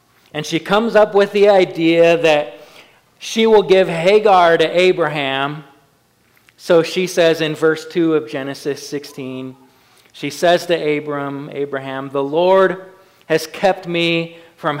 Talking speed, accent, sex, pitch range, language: 140 wpm, American, male, 150-180 Hz, English